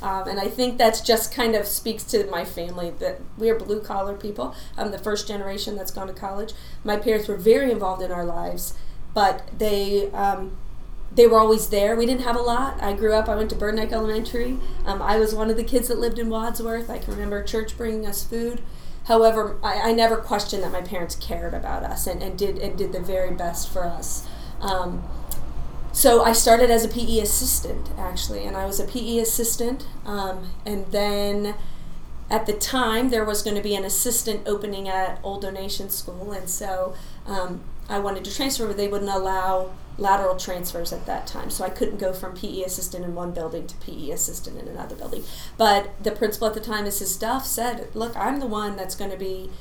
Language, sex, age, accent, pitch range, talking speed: English, female, 30-49, American, 190-225 Hz, 210 wpm